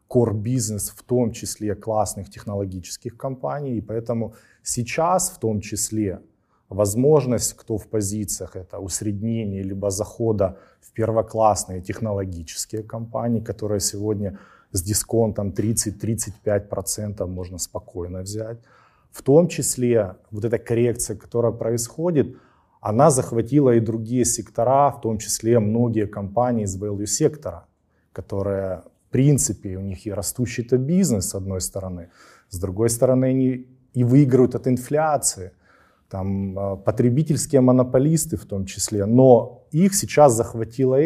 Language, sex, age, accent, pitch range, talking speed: Ukrainian, male, 20-39, native, 105-125 Hz, 120 wpm